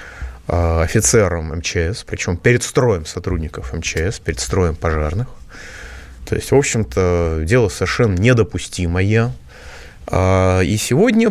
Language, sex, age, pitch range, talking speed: Russian, male, 30-49, 95-145 Hz, 100 wpm